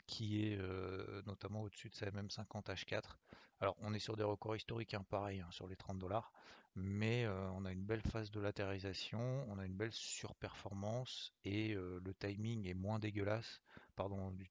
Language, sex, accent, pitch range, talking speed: French, male, French, 95-110 Hz, 185 wpm